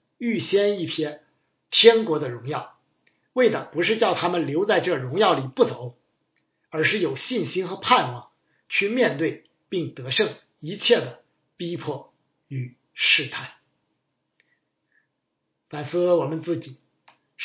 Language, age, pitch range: Chinese, 50-69, 145-180 Hz